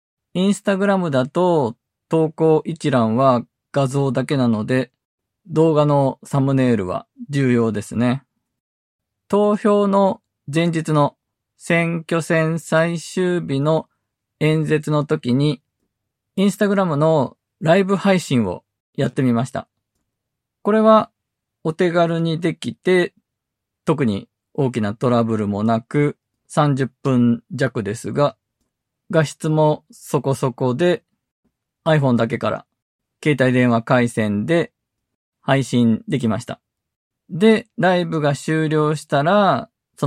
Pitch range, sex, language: 120-165 Hz, male, Japanese